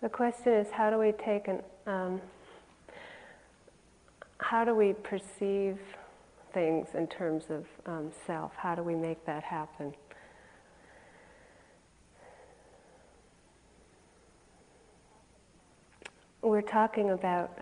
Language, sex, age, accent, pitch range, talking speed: English, female, 40-59, American, 170-195 Hz, 95 wpm